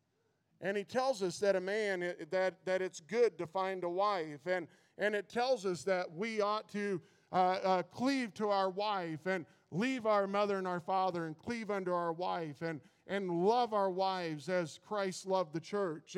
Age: 50-69